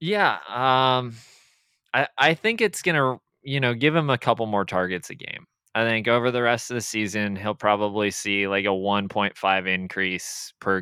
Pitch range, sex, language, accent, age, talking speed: 95-110 Hz, male, English, American, 20-39, 190 wpm